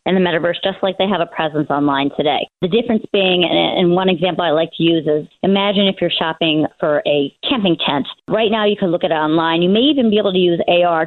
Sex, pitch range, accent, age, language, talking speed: female, 170-205 Hz, American, 30-49, English, 250 wpm